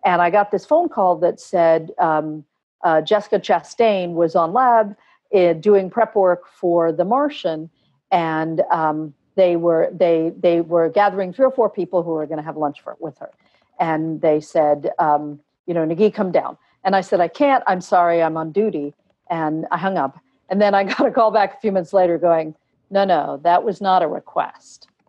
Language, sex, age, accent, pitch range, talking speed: English, female, 50-69, American, 165-205 Hz, 200 wpm